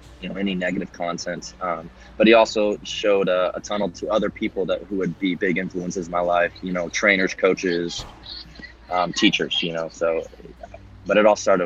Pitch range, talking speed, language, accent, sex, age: 90-110 Hz, 195 wpm, English, American, male, 20-39